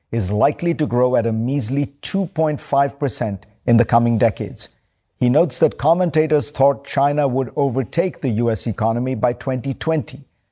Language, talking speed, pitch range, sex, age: English, 145 wpm, 115-150 Hz, male, 50-69